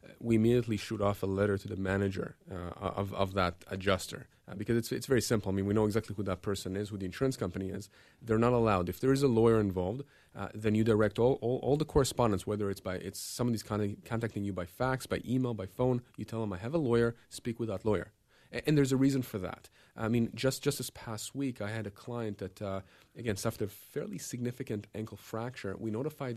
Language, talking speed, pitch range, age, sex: English, 240 wpm, 100-125 Hz, 30-49, male